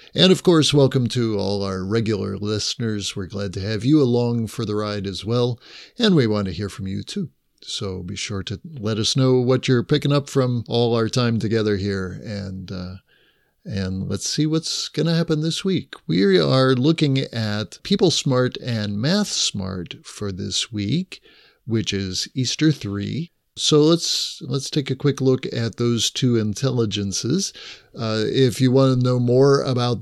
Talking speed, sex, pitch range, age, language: 180 wpm, male, 105-145 Hz, 50-69, English